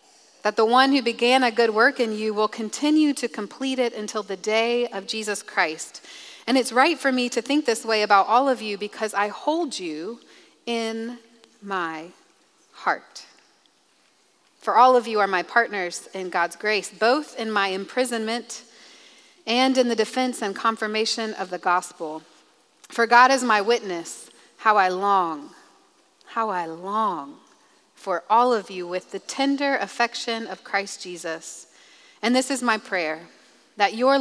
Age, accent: 30-49, American